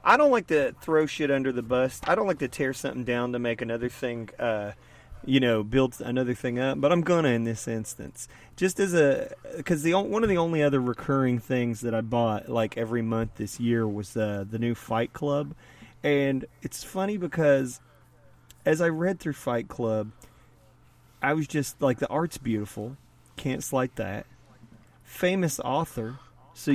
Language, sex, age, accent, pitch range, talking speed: English, male, 30-49, American, 115-150 Hz, 185 wpm